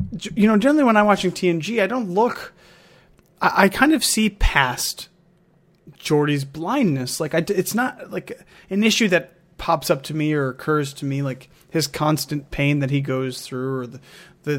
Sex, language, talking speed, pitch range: male, English, 180 wpm, 140-185 Hz